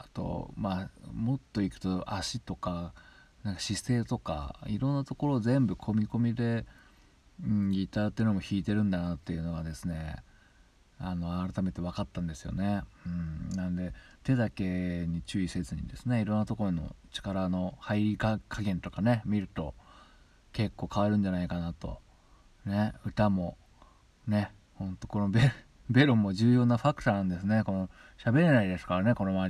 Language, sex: Japanese, male